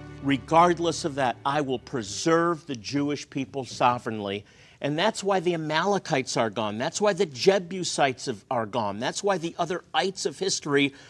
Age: 50-69